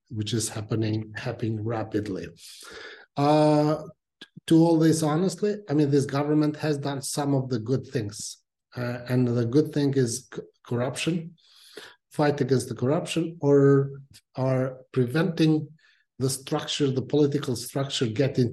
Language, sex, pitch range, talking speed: English, male, 115-140 Hz, 135 wpm